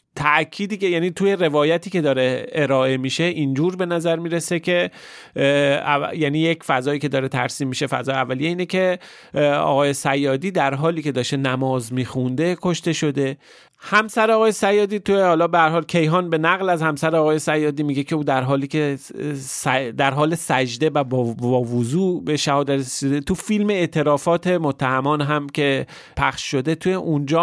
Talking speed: 170 wpm